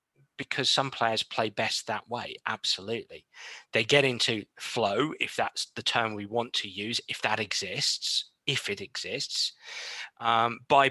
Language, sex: English, male